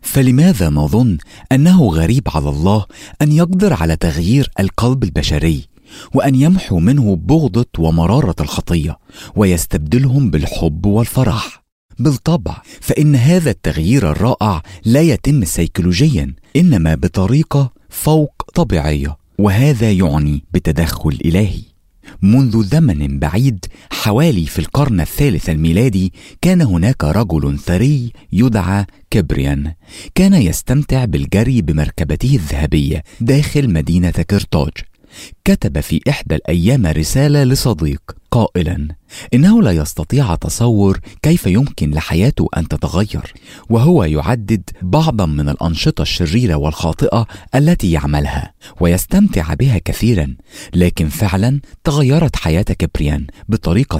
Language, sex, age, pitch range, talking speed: English, male, 40-59, 80-130 Hz, 105 wpm